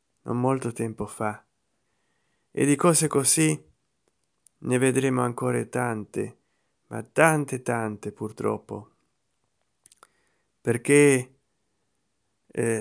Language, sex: Italian, male